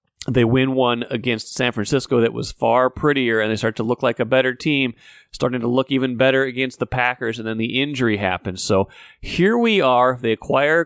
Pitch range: 115-135 Hz